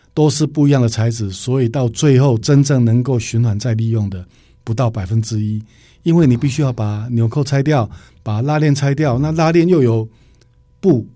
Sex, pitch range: male, 110-135 Hz